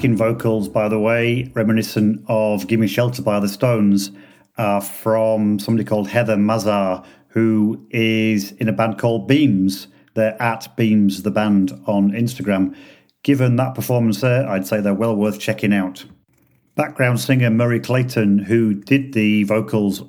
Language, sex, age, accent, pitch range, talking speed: English, male, 40-59, British, 100-115 Hz, 150 wpm